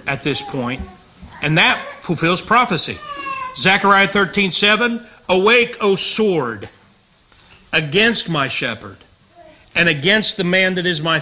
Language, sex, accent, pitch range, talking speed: English, male, American, 125-180 Hz, 120 wpm